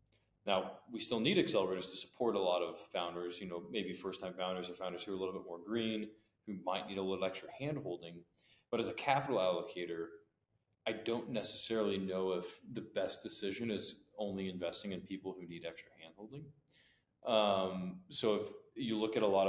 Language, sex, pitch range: English, male, 90-110 Hz